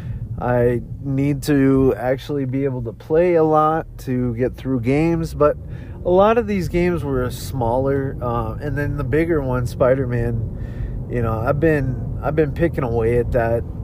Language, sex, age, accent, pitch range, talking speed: English, male, 30-49, American, 120-145 Hz, 170 wpm